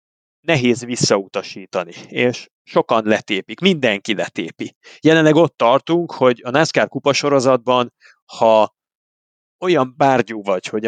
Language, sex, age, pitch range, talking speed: Hungarian, male, 30-49, 110-130 Hz, 110 wpm